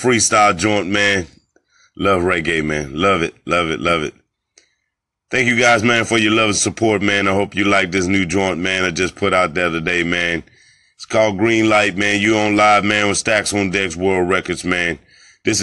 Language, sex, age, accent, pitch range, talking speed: English, male, 30-49, American, 95-110 Hz, 210 wpm